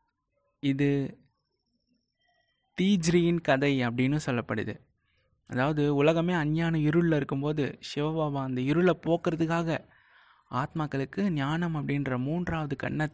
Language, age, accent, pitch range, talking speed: Tamil, 20-39, native, 125-165 Hz, 85 wpm